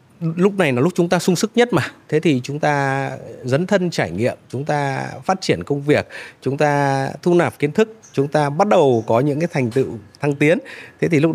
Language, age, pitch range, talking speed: Vietnamese, 20-39, 120-160 Hz, 235 wpm